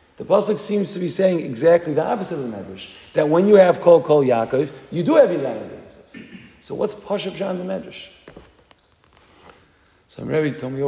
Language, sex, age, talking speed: English, male, 40-59, 190 wpm